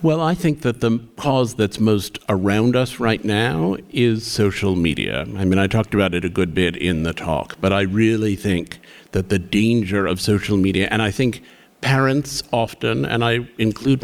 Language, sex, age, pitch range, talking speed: English, male, 50-69, 100-130 Hz, 190 wpm